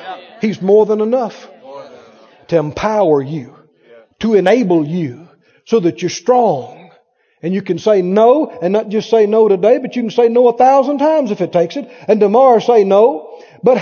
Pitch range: 205-320 Hz